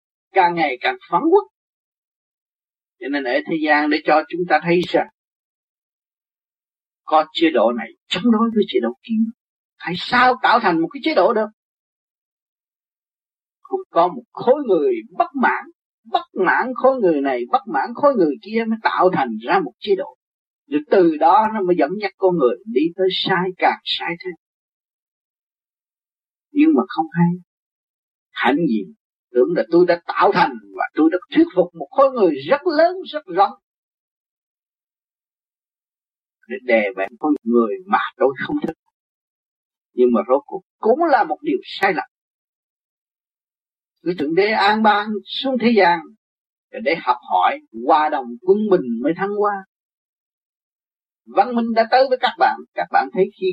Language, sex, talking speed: Vietnamese, male, 165 wpm